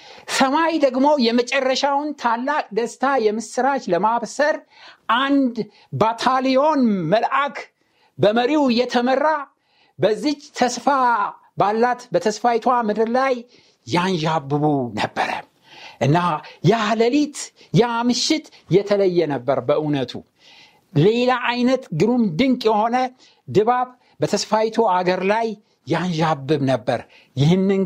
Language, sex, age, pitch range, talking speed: Amharic, male, 60-79, 210-255 Hz, 80 wpm